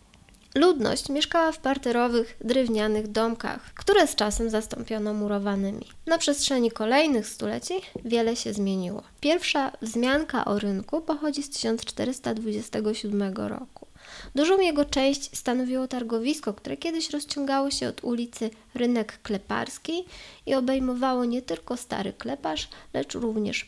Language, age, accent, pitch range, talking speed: Polish, 20-39, native, 220-280 Hz, 120 wpm